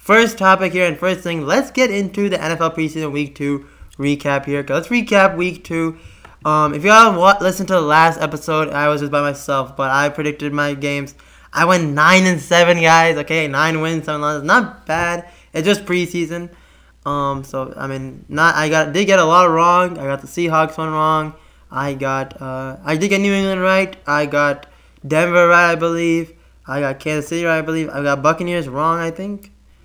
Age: 20-39